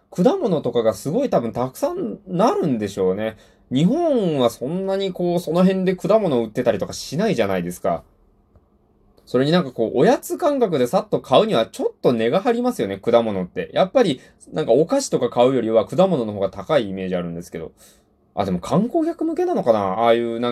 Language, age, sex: Japanese, 20-39, male